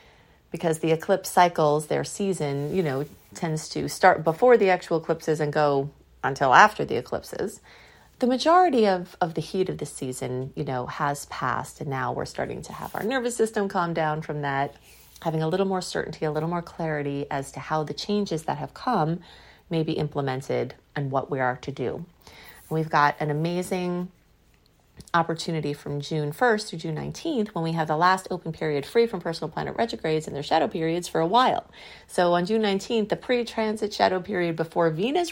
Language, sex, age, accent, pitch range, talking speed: English, female, 30-49, American, 150-190 Hz, 195 wpm